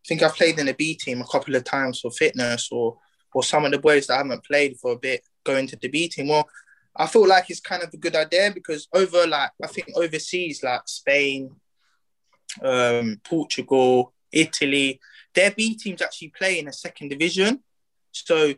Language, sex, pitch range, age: English, male, 135-180 Hz, 20-39